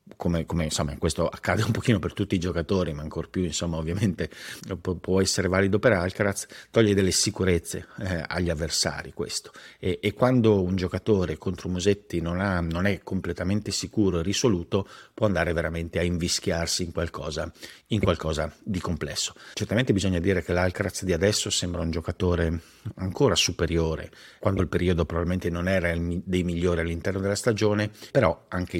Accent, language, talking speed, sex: native, Italian, 170 wpm, male